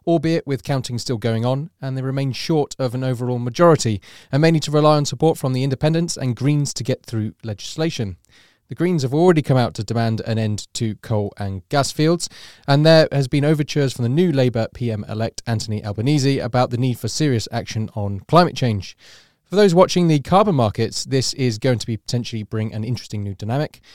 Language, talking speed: English, 205 wpm